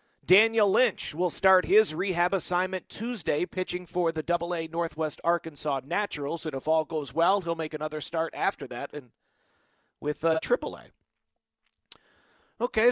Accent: American